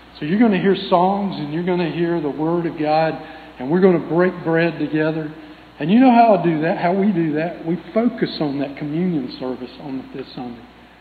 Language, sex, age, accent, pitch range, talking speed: English, male, 50-69, American, 140-180 Hz, 235 wpm